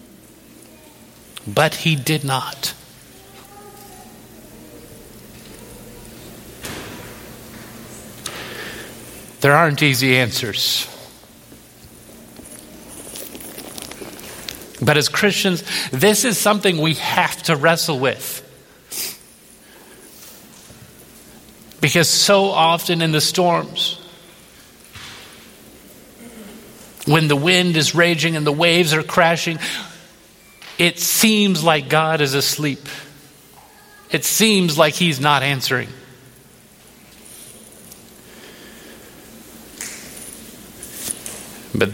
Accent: American